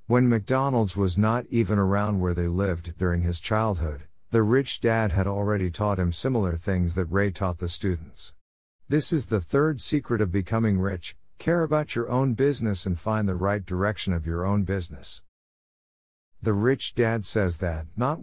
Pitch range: 85-120 Hz